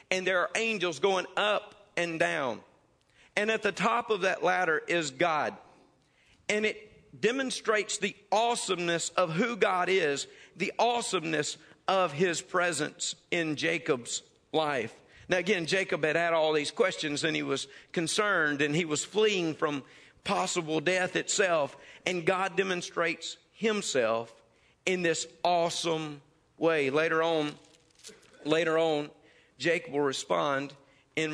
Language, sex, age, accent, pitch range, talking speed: English, male, 50-69, American, 145-185 Hz, 135 wpm